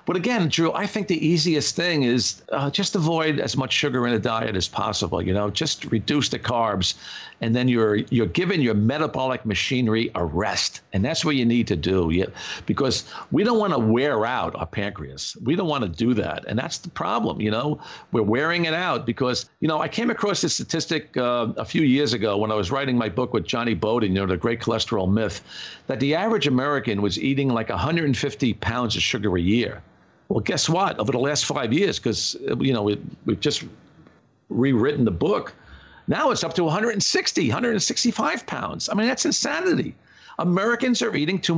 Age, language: 50-69, English